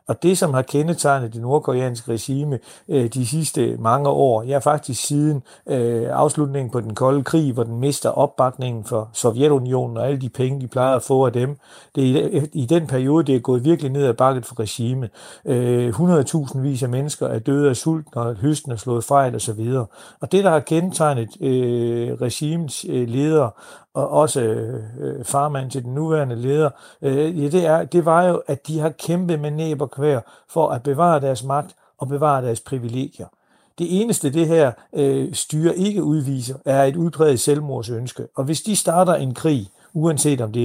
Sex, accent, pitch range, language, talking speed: male, native, 125-150 Hz, Danish, 180 wpm